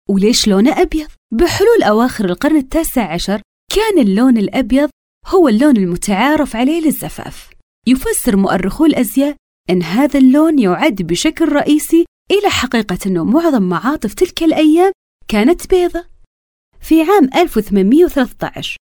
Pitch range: 200-305 Hz